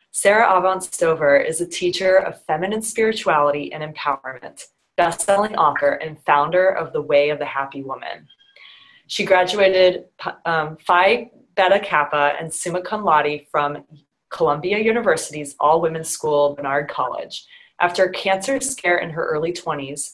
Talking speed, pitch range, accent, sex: 140 wpm, 150-190 Hz, American, female